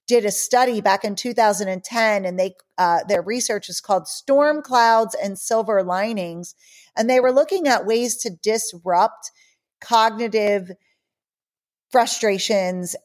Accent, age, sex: American, 40-59, female